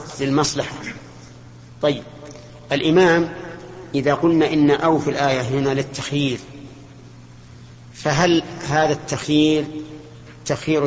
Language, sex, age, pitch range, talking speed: Arabic, male, 50-69, 115-150 Hz, 85 wpm